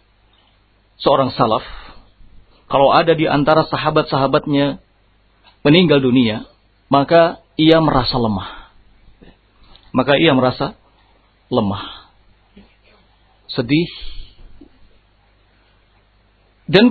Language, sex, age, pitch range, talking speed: Indonesian, male, 50-69, 100-155 Hz, 65 wpm